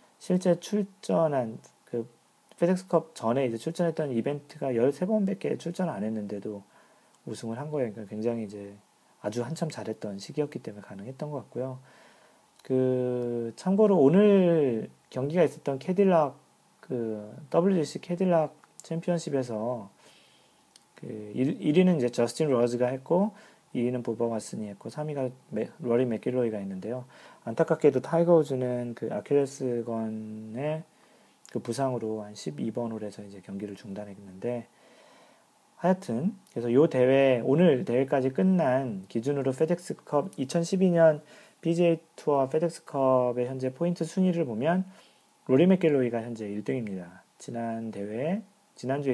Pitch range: 115-165 Hz